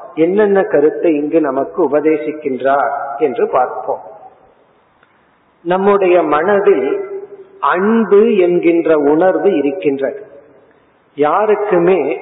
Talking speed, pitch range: 70 wpm, 165-245 Hz